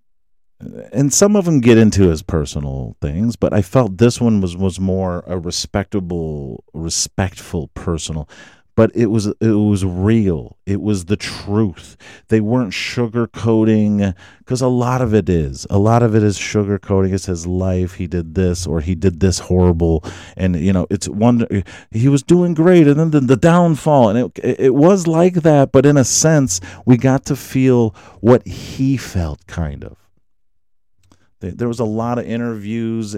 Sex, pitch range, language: male, 90-115 Hz, English